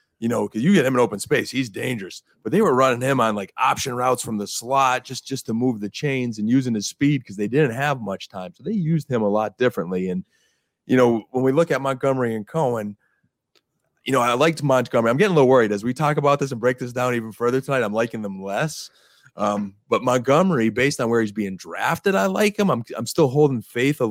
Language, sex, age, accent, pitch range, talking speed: English, male, 30-49, American, 110-130 Hz, 250 wpm